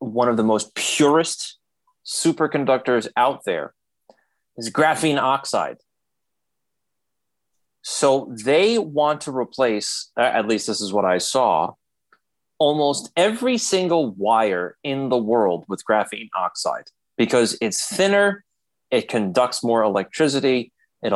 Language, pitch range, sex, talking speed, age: English, 115-185 Hz, male, 115 wpm, 30-49